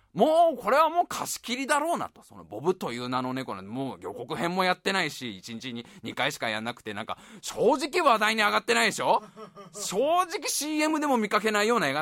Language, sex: Japanese, male